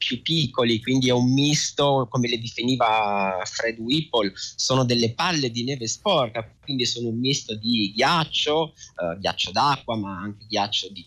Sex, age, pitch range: male, 30-49, 115-150 Hz